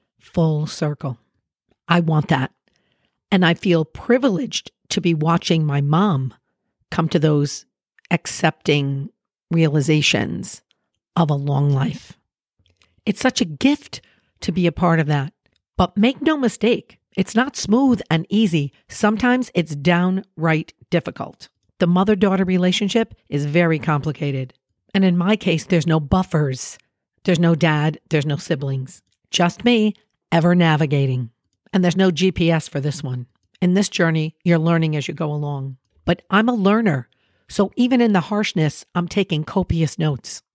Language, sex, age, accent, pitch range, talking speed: English, female, 50-69, American, 150-190 Hz, 145 wpm